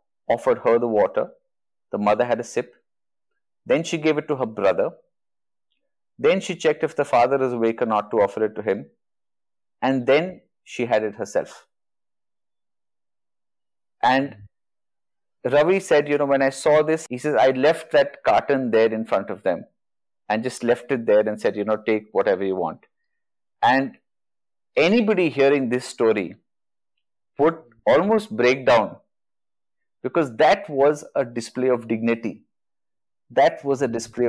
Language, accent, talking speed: Hindi, native, 160 wpm